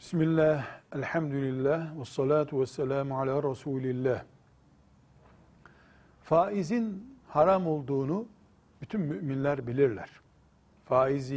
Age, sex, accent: 60-79, male, native